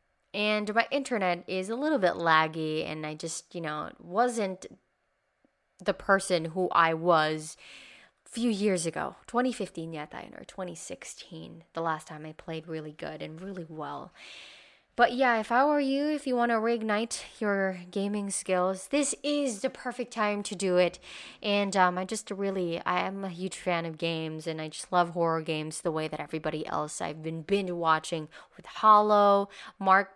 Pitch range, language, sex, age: 170-210 Hz, Filipino, female, 20-39